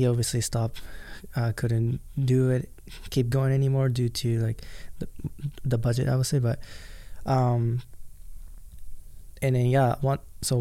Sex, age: male, 20-39